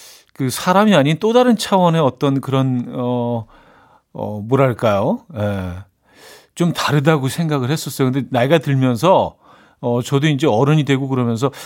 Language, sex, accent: Korean, male, native